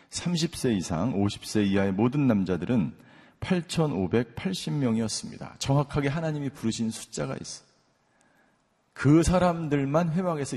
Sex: male